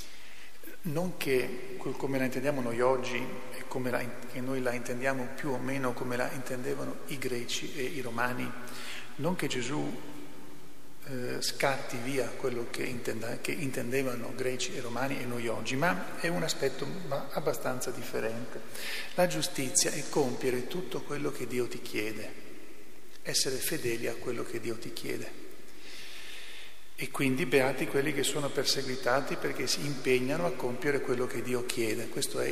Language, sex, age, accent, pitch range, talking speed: Italian, male, 40-59, native, 125-140 Hz, 155 wpm